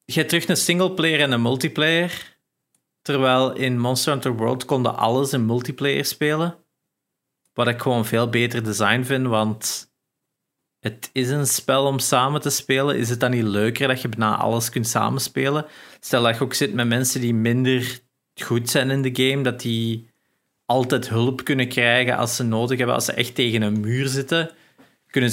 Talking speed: 180 wpm